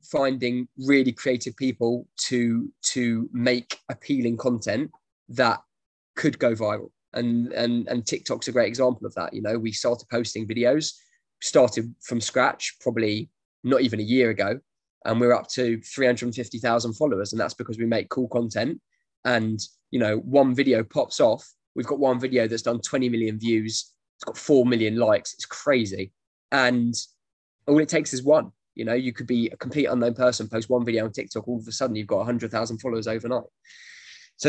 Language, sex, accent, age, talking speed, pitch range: English, male, British, 20-39, 180 wpm, 115-130 Hz